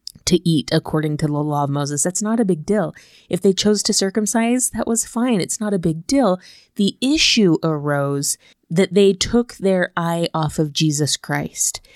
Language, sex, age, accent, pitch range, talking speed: English, female, 20-39, American, 155-185 Hz, 190 wpm